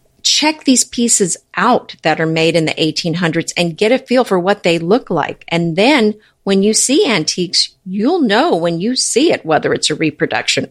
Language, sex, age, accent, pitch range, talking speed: English, female, 50-69, American, 165-220 Hz, 195 wpm